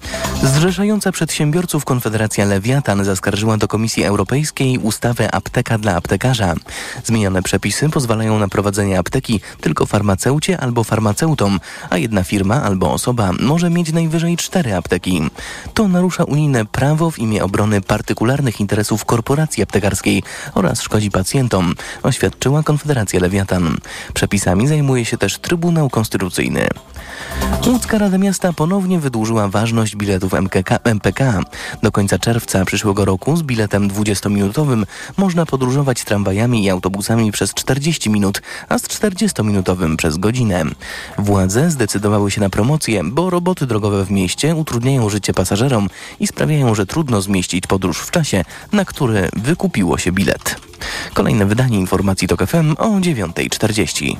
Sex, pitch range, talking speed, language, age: male, 100-145 Hz, 130 wpm, Polish, 20-39